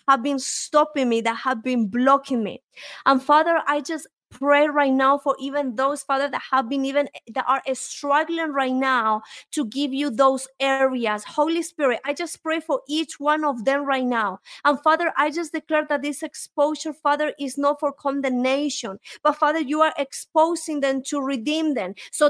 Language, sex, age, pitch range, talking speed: English, female, 30-49, 275-310 Hz, 185 wpm